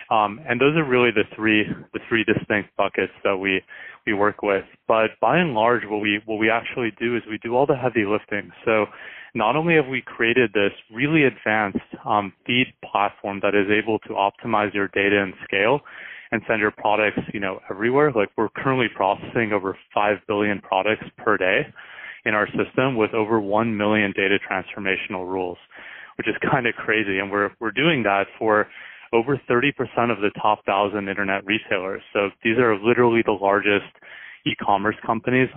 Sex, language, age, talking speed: male, English, 20-39, 180 wpm